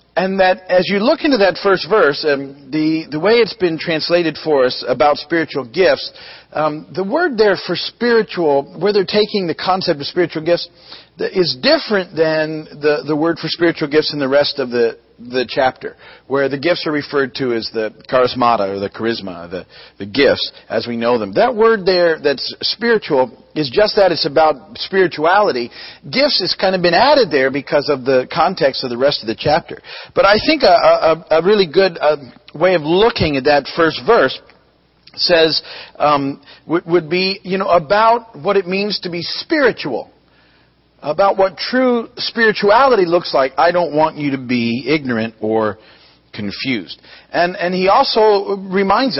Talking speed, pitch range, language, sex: 180 wpm, 135-190 Hz, English, male